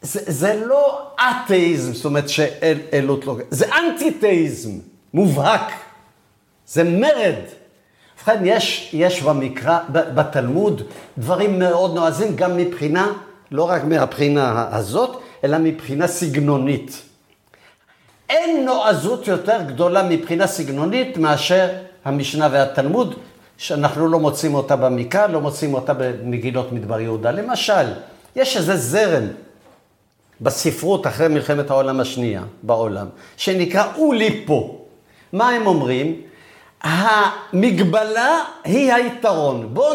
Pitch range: 145-220 Hz